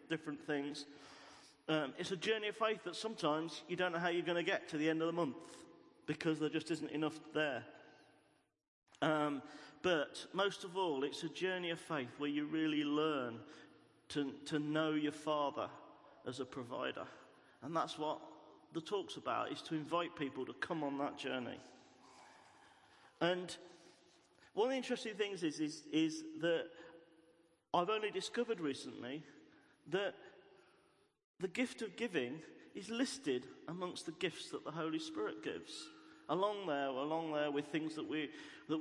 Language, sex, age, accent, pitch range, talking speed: English, male, 40-59, British, 150-195 Hz, 160 wpm